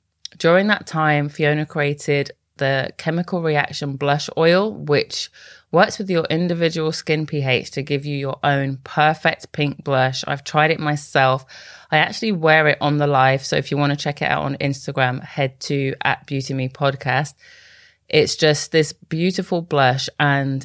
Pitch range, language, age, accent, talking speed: 135-155 Hz, English, 20-39, British, 160 wpm